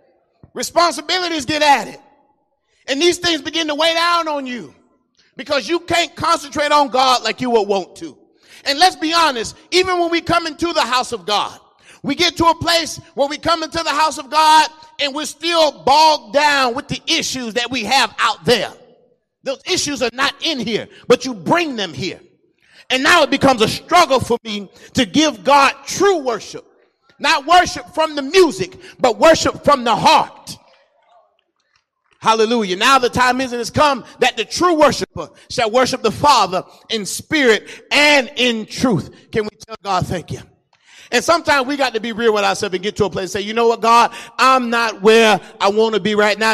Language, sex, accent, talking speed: English, male, American, 195 wpm